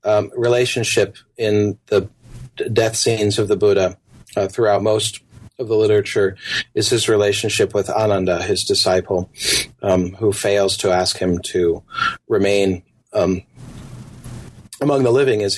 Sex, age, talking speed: male, 40-59, 135 wpm